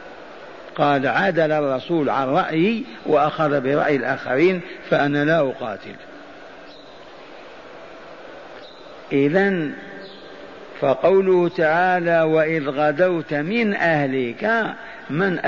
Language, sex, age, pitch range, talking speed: Arabic, male, 50-69, 145-185 Hz, 75 wpm